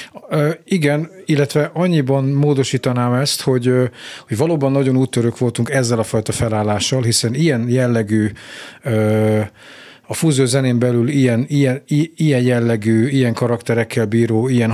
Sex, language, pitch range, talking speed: male, Hungarian, 115-140 Hz, 120 wpm